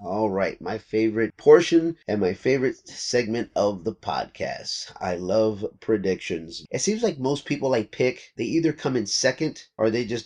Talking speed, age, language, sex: 175 wpm, 30-49, English, male